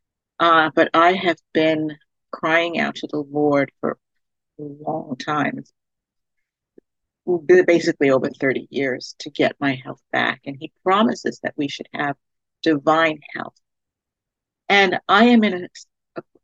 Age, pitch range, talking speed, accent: 50-69, 155-235 Hz, 140 wpm, American